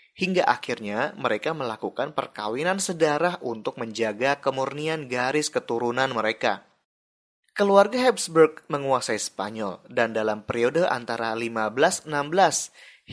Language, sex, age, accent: Indonesian, male, 20-39, native